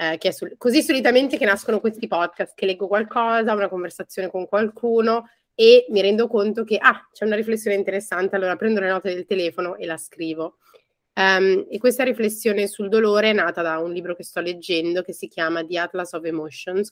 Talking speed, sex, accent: 200 wpm, female, native